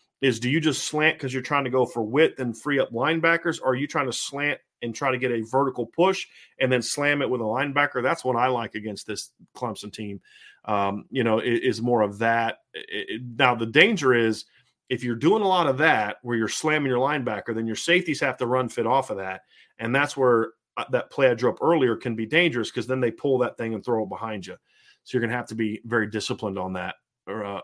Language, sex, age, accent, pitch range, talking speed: English, male, 30-49, American, 115-145 Hz, 245 wpm